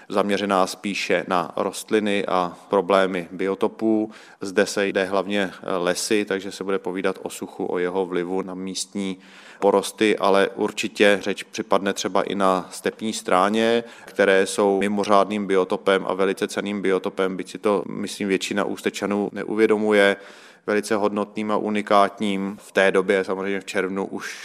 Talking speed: 145 wpm